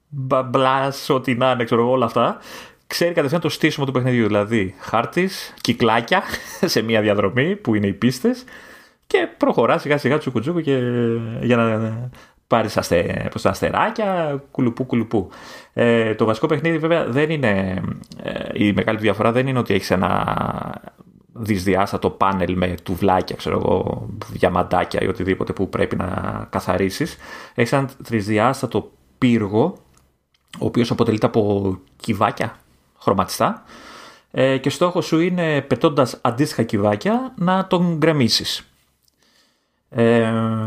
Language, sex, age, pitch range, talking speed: Greek, male, 30-49, 105-150 Hz, 125 wpm